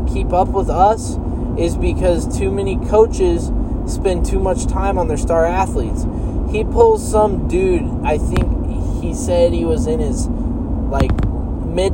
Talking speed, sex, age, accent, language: 155 wpm, male, 20-39, American, English